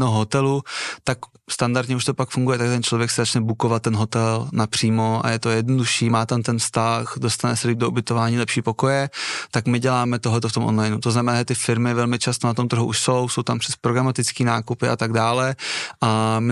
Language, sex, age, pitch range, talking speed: Czech, male, 20-39, 115-125 Hz, 215 wpm